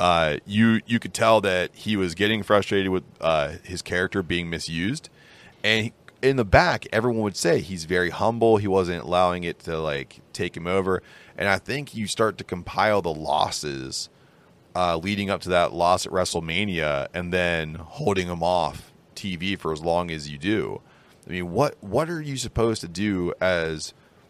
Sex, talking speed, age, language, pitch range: male, 185 wpm, 30-49, English, 85-110 Hz